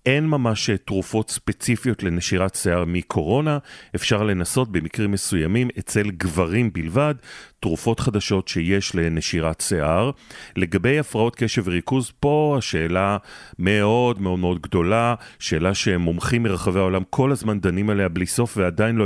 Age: 40-59